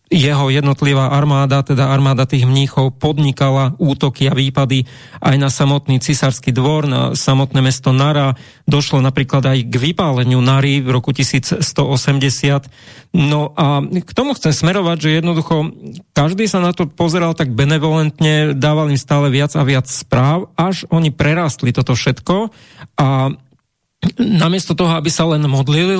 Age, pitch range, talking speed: 40-59, 135-160 Hz, 145 wpm